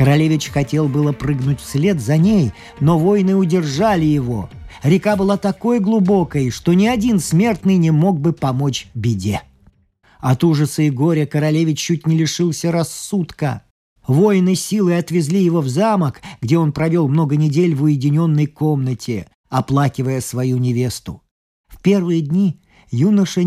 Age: 40-59